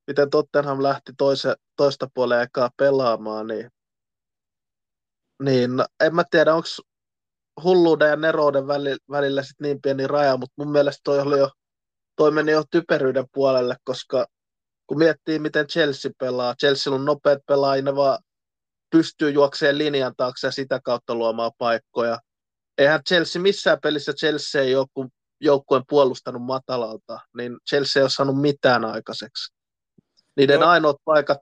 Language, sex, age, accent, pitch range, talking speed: Finnish, male, 20-39, native, 125-150 Hz, 145 wpm